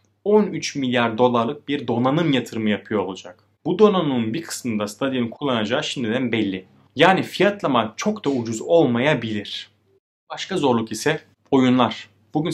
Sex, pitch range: male, 105-145 Hz